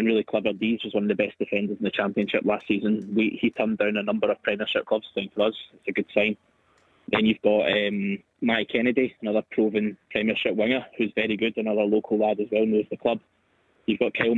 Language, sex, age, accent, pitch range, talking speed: English, male, 20-39, British, 105-115 Hz, 220 wpm